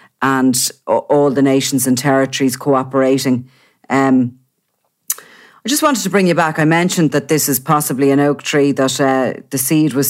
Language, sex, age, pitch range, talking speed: English, female, 40-59, 135-165 Hz, 170 wpm